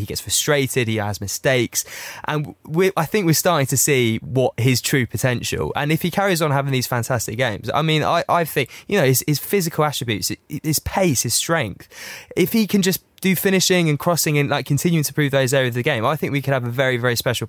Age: 20-39